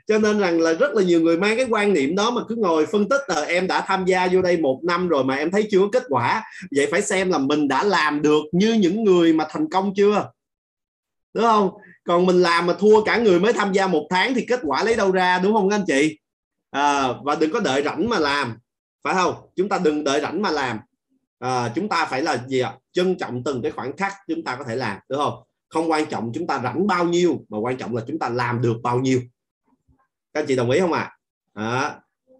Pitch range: 150-215 Hz